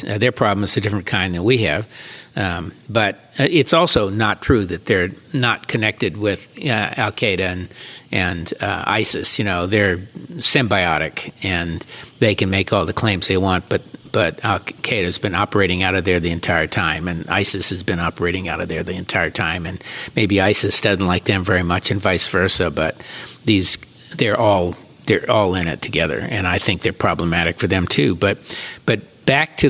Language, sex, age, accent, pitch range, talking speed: English, male, 60-79, American, 90-115 Hz, 190 wpm